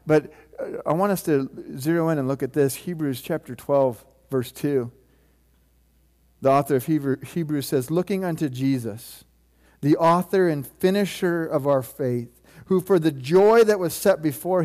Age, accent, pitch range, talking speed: 50-69, American, 130-185 Hz, 160 wpm